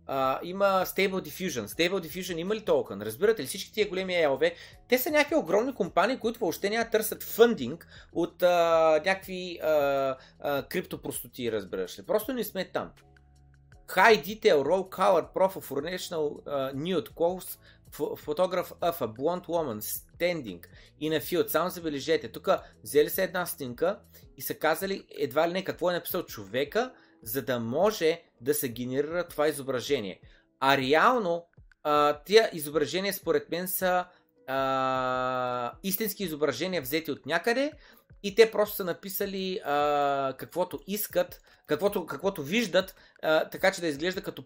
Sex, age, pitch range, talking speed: male, 30-49, 135-190 Hz, 150 wpm